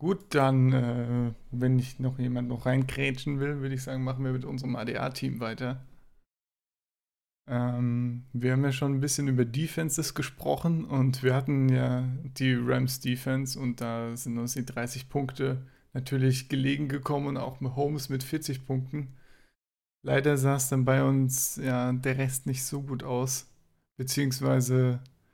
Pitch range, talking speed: 125-135 Hz, 155 wpm